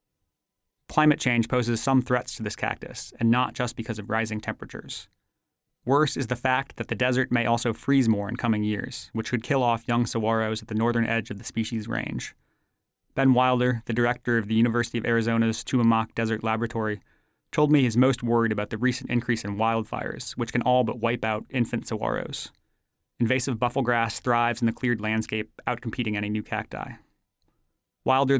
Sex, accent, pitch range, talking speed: male, American, 115-125 Hz, 180 wpm